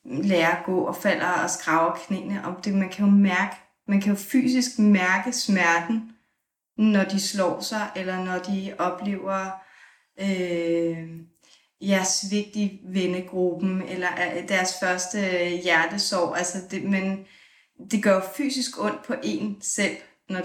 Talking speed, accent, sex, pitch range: 140 wpm, native, female, 180-210 Hz